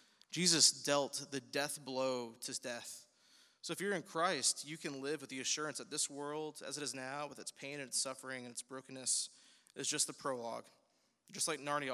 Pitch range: 125-150 Hz